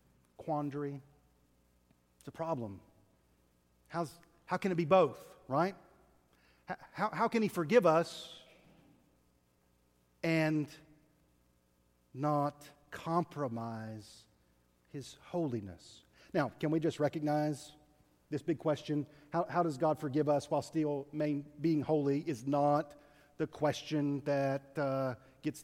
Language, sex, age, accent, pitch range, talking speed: English, male, 40-59, American, 130-160 Hz, 110 wpm